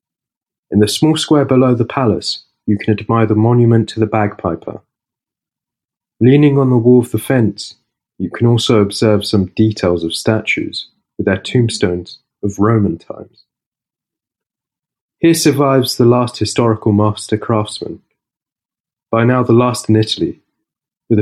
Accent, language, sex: British, Italian, male